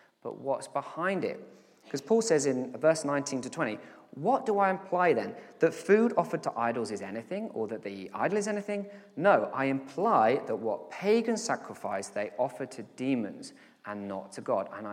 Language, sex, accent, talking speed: English, male, British, 185 wpm